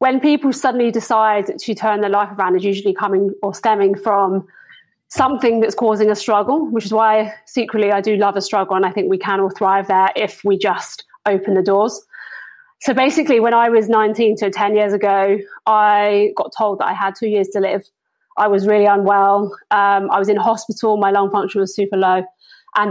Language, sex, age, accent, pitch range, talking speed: English, female, 20-39, British, 205-235 Hz, 205 wpm